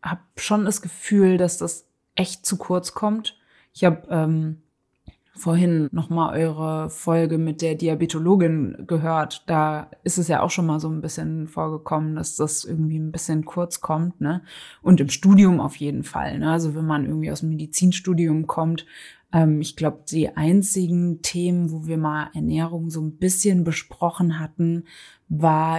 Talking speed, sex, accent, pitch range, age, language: 170 wpm, female, German, 155-170 Hz, 20-39, German